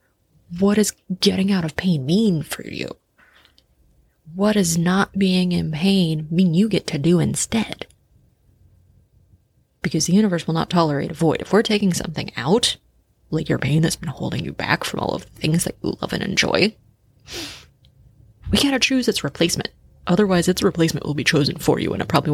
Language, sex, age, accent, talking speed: English, female, 20-39, American, 185 wpm